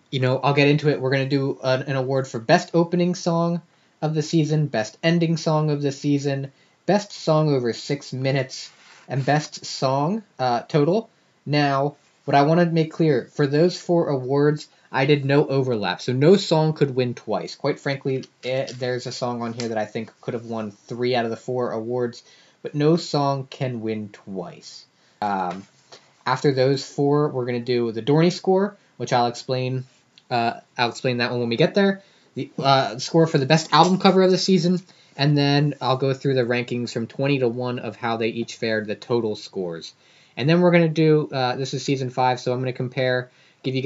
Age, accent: 20-39, American